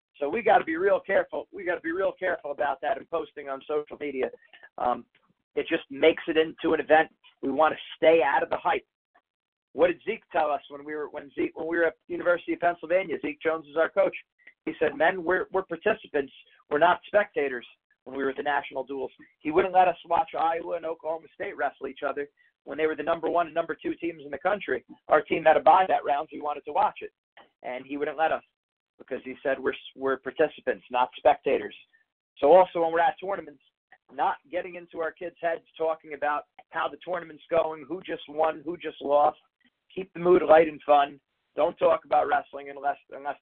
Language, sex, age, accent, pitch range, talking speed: English, male, 40-59, American, 145-185 Hz, 220 wpm